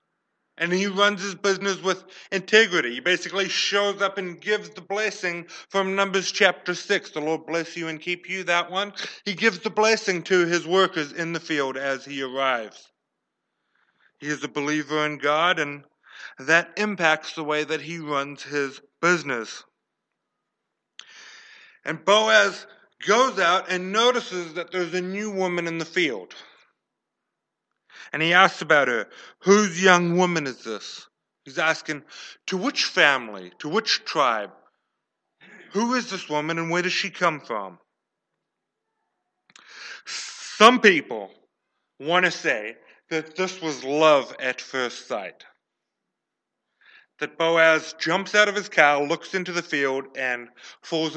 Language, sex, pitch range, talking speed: English, male, 150-195 Hz, 145 wpm